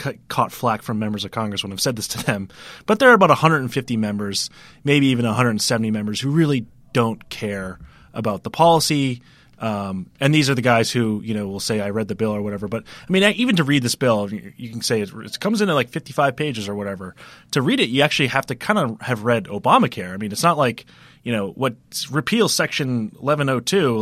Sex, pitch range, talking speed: male, 105-145 Hz, 225 wpm